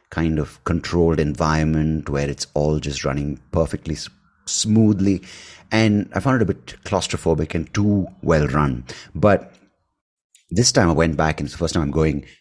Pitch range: 75-95 Hz